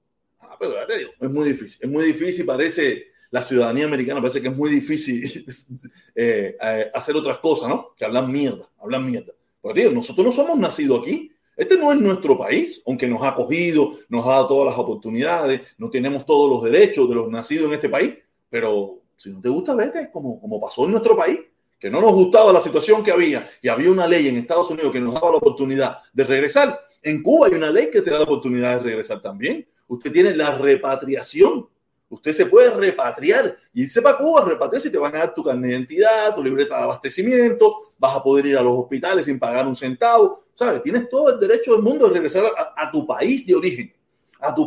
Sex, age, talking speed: male, 30-49, 220 wpm